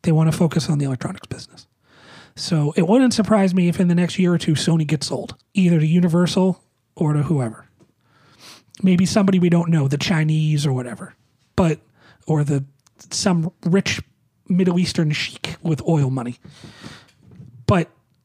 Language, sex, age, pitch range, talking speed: English, male, 30-49, 140-185 Hz, 165 wpm